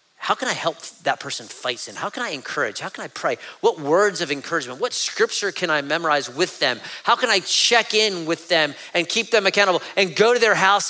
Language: English